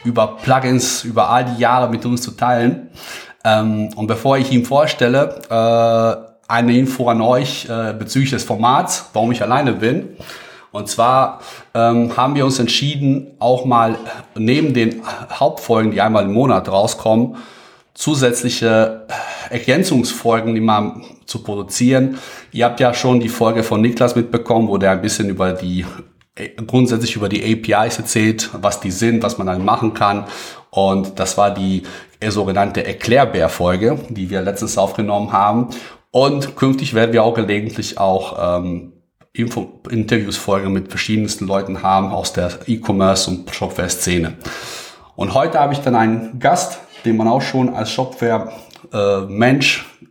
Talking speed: 140 wpm